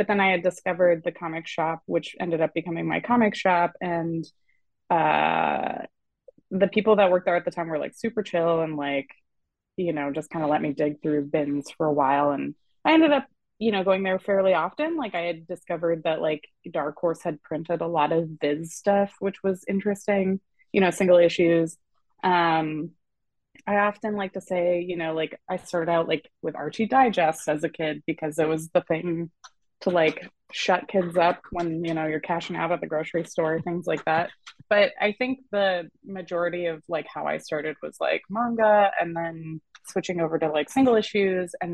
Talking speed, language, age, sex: 200 wpm, English, 20-39, female